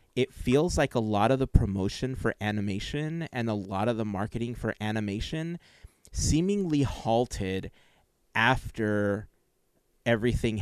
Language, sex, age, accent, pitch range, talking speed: English, male, 30-49, American, 100-125 Hz, 125 wpm